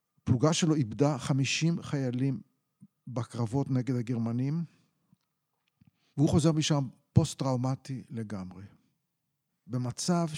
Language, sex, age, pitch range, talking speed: Hebrew, male, 50-69, 125-155 Hz, 80 wpm